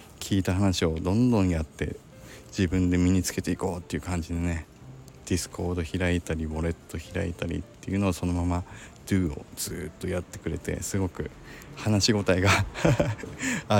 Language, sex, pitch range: Japanese, male, 85-105 Hz